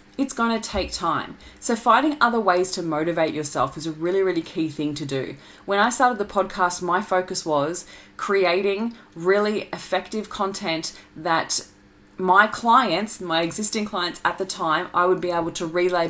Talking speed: 175 wpm